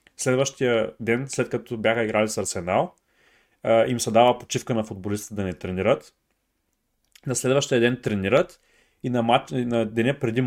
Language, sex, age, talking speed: Bulgarian, male, 30-49, 155 wpm